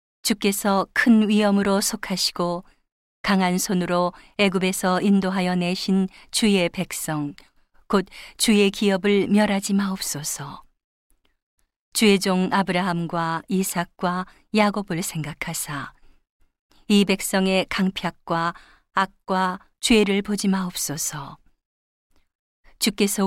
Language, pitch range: Korean, 175-205 Hz